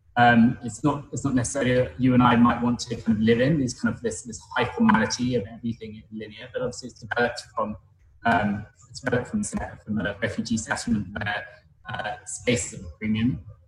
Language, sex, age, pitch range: Russian, male, 20-39, 110-125 Hz